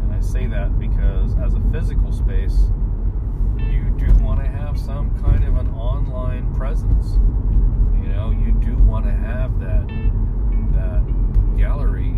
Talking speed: 140 wpm